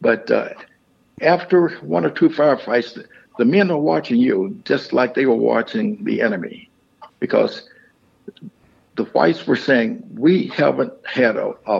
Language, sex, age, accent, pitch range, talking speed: English, male, 60-79, American, 115-175 Hz, 145 wpm